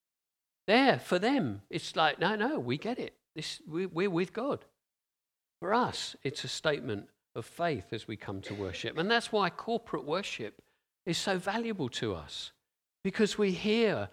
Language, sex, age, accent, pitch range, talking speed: English, male, 50-69, British, 140-200 Hz, 165 wpm